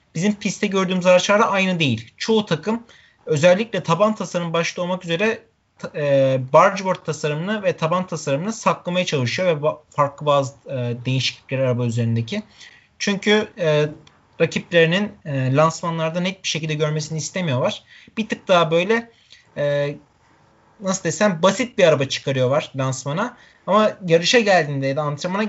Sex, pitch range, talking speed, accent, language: male, 150-195 Hz, 140 wpm, native, Turkish